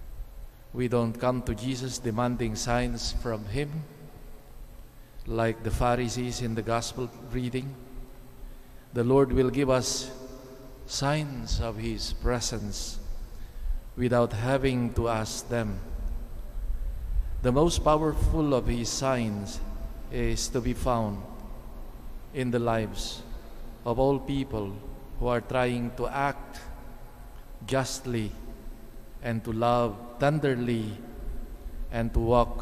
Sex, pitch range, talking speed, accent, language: male, 110-130 Hz, 110 wpm, Filipino, English